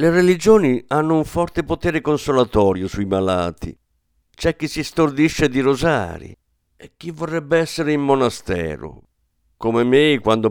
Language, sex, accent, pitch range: Italian, male, native, 95-145 Hz